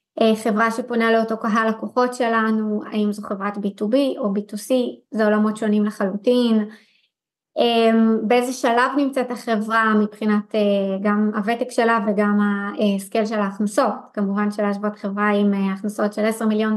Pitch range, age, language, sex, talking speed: 210-255 Hz, 20-39, Hebrew, female, 130 wpm